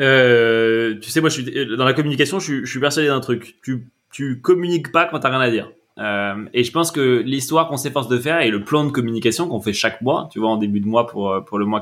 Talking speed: 275 wpm